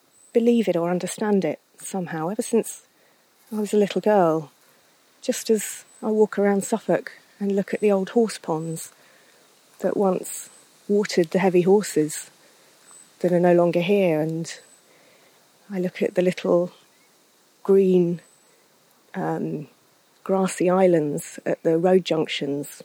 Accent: British